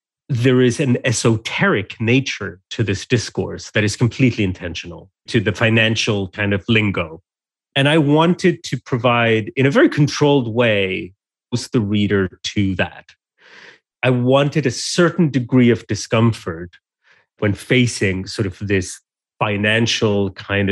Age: 30-49